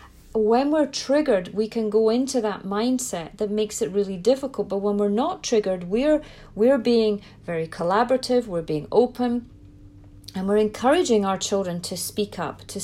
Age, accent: 40-59, British